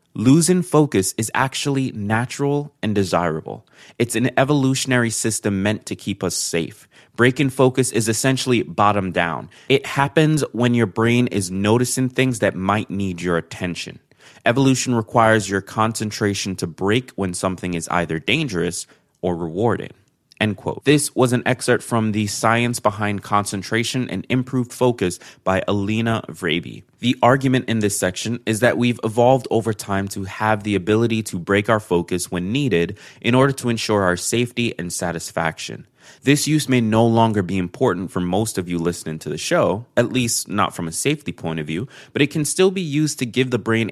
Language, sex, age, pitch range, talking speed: English, male, 20-39, 95-125 Hz, 170 wpm